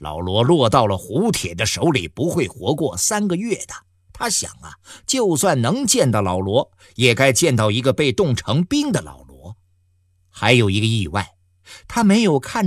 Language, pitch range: Chinese, 90-135 Hz